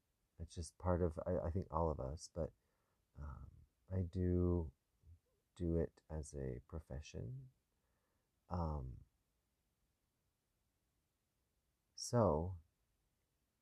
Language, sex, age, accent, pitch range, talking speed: English, male, 30-49, American, 80-95 Hz, 95 wpm